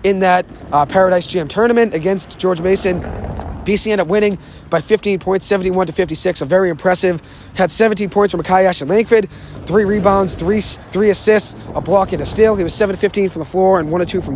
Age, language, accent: 30-49, English, American